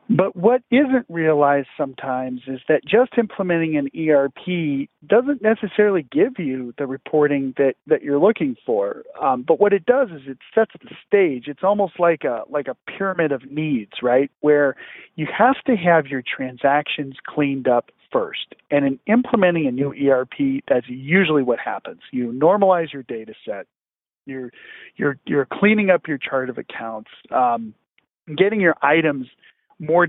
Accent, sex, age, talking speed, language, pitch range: American, male, 40-59, 160 wpm, English, 135-170 Hz